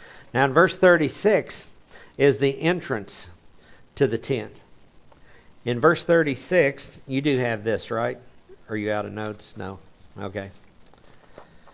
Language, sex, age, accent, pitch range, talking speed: English, male, 60-79, American, 105-135 Hz, 130 wpm